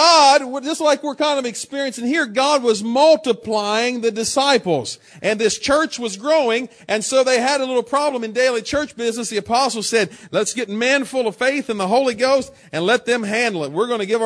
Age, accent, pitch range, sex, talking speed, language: 40-59, American, 210-265 Hz, male, 215 wpm, English